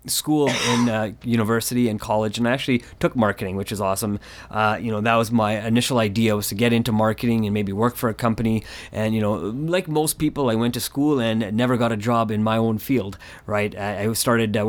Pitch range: 105-120 Hz